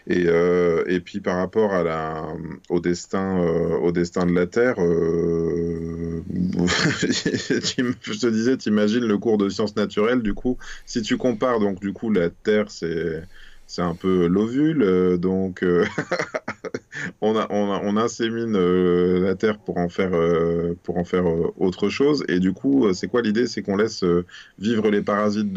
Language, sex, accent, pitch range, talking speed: French, male, French, 90-110 Hz, 180 wpm